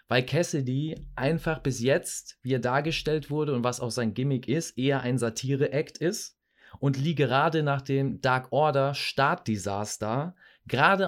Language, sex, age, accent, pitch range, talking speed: German, male, 30-49, German, 115-150 Hz, 155 wpm